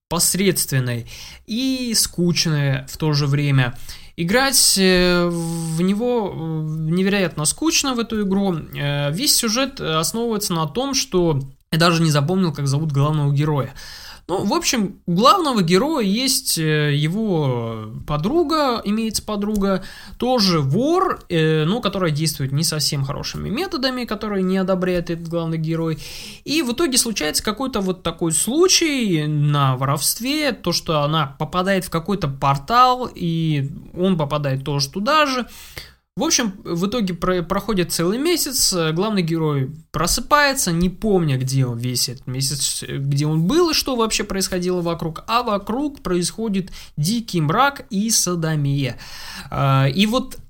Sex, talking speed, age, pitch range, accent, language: male, 130 wpm, 20-39, 155-225 Hz, native, Russian